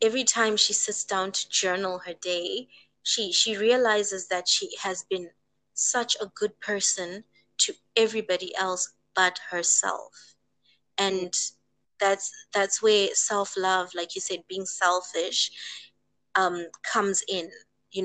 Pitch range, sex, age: 180-225 Hz, female, 20-39